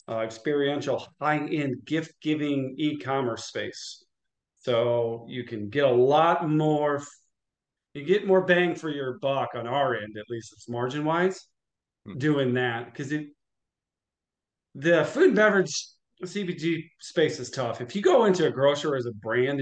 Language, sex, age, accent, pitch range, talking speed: English, male, 40-59, American, 125-165 Hz, 145 wpm